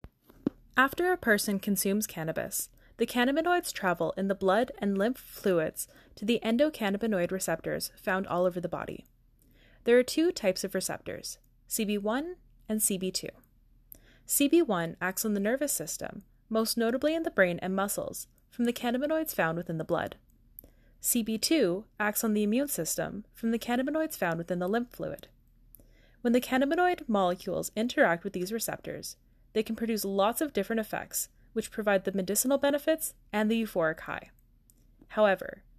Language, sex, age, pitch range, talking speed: English, female, 10-29, 185-245 Hz, 155 wpm